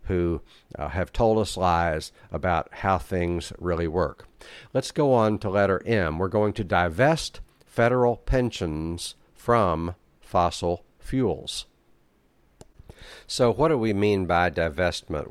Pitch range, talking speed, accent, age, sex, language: 90-110 Hz, 130 wpm, American, 60-79, male, English